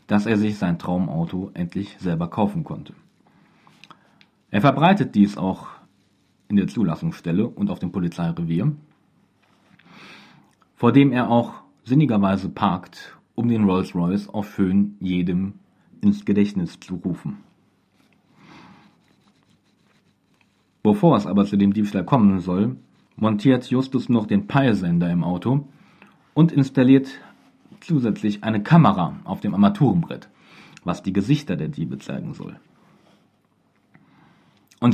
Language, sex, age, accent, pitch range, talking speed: German, male, 40-59, German, 100-150 Hz, 115 wpm